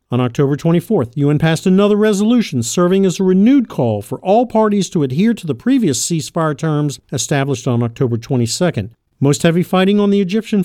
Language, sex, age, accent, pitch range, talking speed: English, male, 50-69, American, 130-195 Hz, 180 wpm